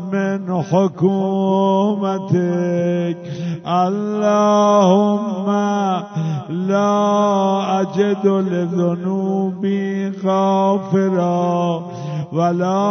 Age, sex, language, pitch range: 60-79, male, Persian, 175-195 Hz